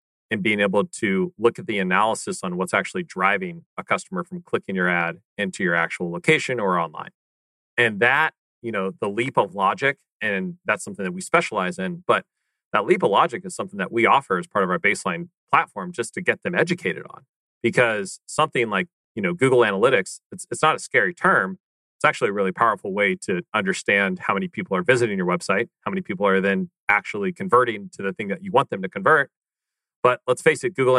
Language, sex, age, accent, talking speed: English, male, 30-49, American, 215 wpm